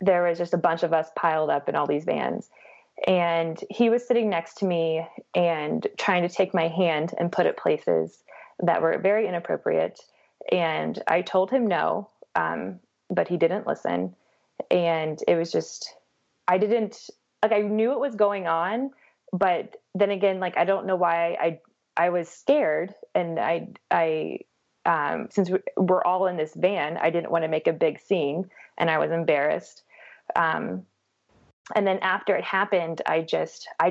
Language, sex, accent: English, female, American